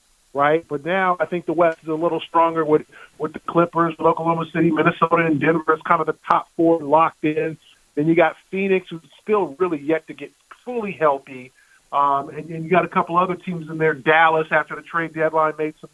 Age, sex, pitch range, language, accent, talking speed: 40-59, male, 150-175 Hz, English, American, 220 wpm